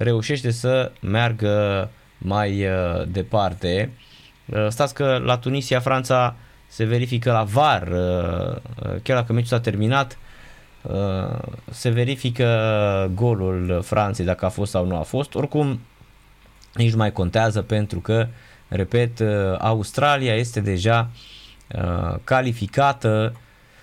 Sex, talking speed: male, 120 wpm